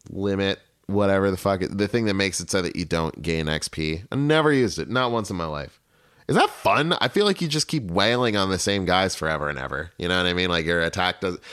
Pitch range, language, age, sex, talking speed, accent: 80-100 Hz, English, 30-49, male, 260 wpm, American